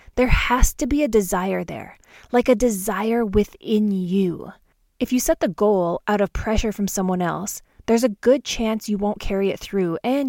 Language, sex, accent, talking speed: English, female, American, 190 wpm